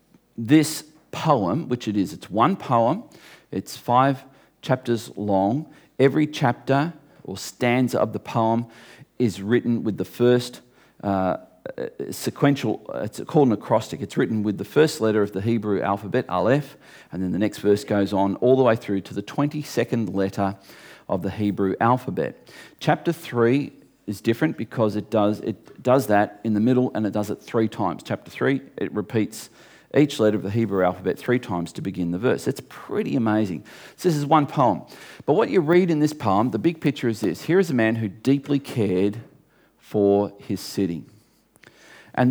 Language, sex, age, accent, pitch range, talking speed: English, male, 40-59, Australian, 100-135 Hz, 180 wpm